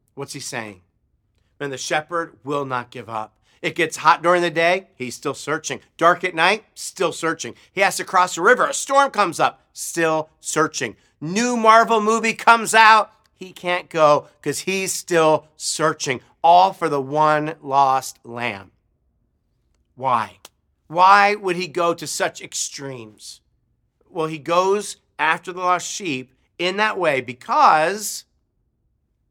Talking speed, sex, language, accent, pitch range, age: 150 wpm, male, English, American, 130-195 Hz, 50-69